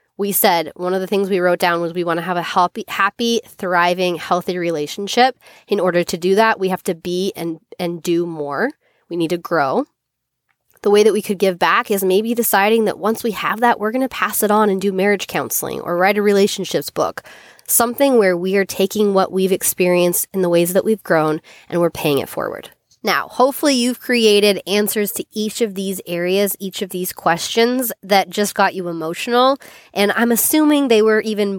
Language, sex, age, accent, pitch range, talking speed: English, female, 20-39, American, 175-215 Hz, 210 wpm